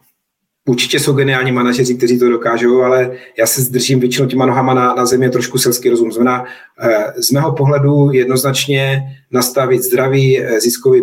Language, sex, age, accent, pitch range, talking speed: Czech, male, 30-49, native, 120-135 Hz, 150 wpm